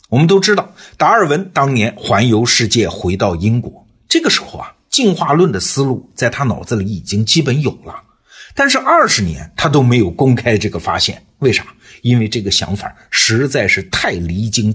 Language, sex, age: Chinese, male, 50-69